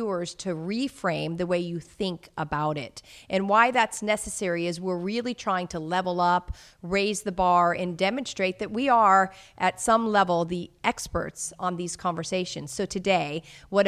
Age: 40-59